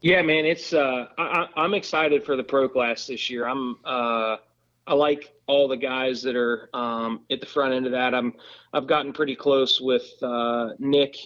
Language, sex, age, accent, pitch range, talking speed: English, male, 30-49, American, 125-145 Hz, 195 wpm